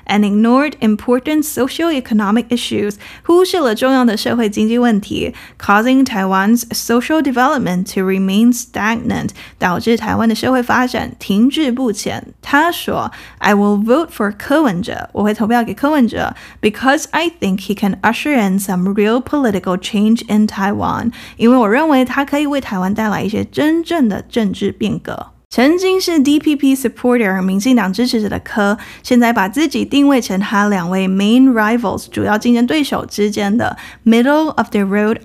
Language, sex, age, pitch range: Chinese, female, 10-29, 205-265 Hz